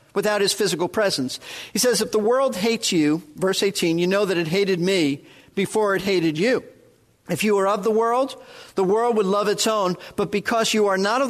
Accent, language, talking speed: American, English, 220 wpm